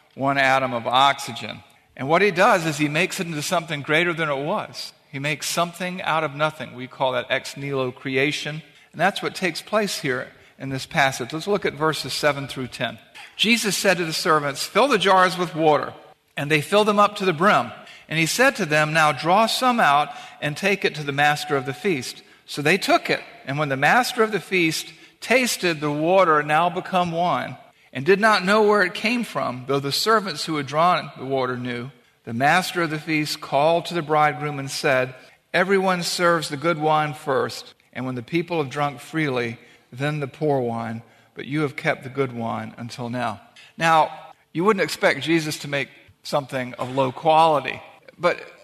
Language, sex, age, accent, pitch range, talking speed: English, male, 50-69, American, 135-180 Hz, 205 wpm